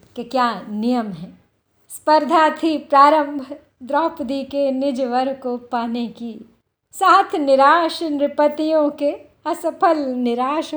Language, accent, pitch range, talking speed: Hindi, native, 230-295 Hz, 110 wpm